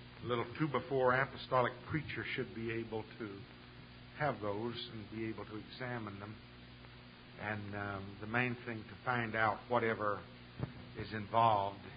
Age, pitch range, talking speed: 50-69, 110-130 Hz, 145 wpm